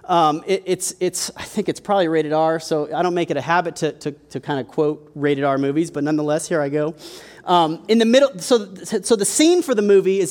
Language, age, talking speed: English, 30-49, 250 wpm